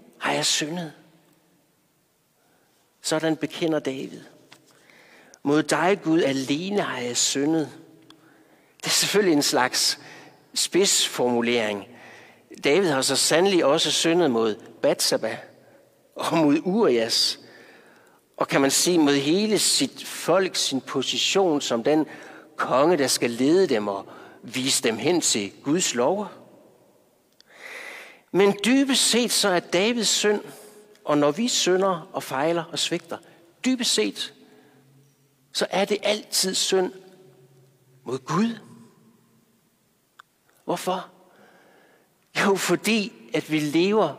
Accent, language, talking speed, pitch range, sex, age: native, Danish, 115 wpm, 140-195 Hz, male, 60-79